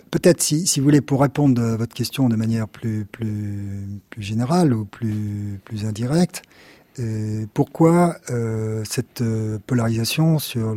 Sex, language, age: male, French, 50-69